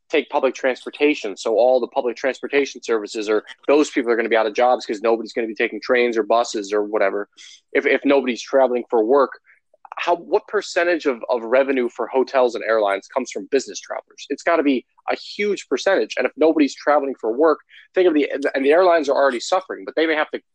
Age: 20-39